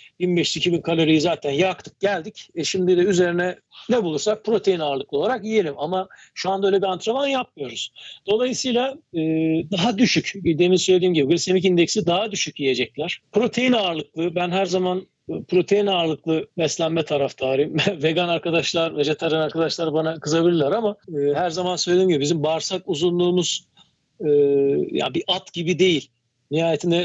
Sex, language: male, Turkish